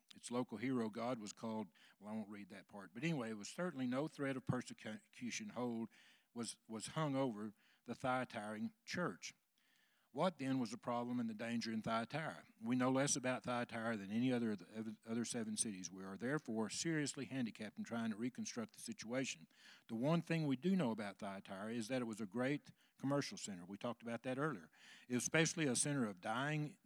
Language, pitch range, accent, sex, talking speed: English, 115-145 Hz, American, male, 205 wpm